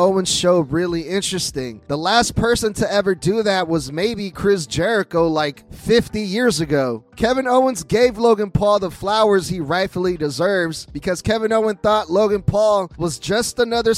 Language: English